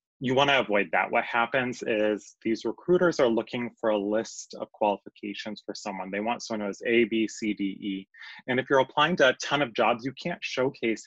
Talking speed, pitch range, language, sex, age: 210 wpm, 110-130 Hz, English, male, 20-39